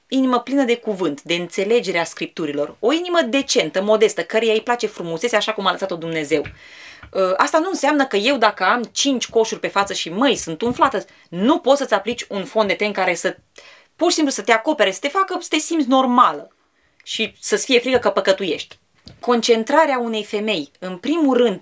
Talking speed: 190 wpm